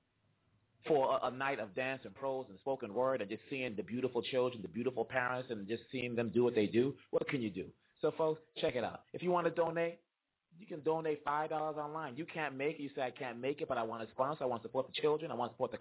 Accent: American